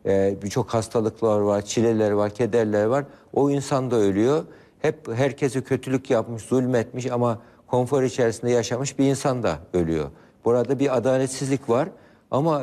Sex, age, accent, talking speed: male, 60-79, native, 145 wpm